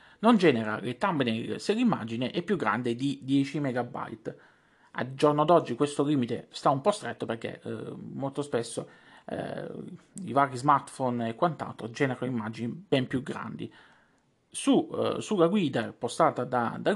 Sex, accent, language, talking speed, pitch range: male, native, Italian, 150 wpm, 120-155 Hz